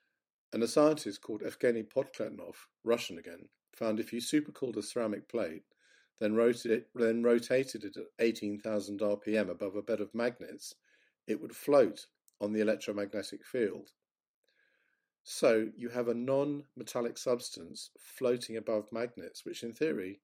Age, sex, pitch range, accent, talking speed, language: 50-69, male, 105-120 Hz, British, 140 wpm, English